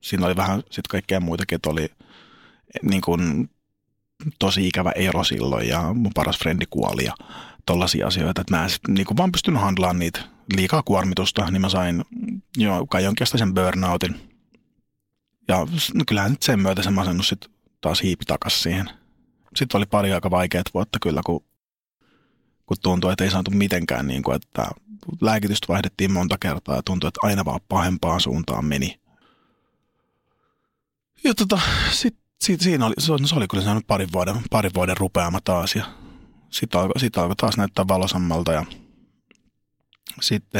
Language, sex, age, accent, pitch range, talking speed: Finnish, male, 30-49, native, 90-110 Hz, 155 wpm